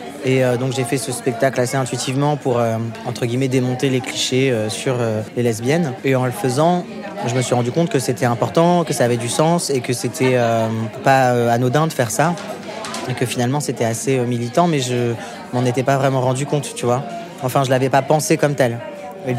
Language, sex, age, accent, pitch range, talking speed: French, male, 20-39, French, 120-145 Hz, 225 wpm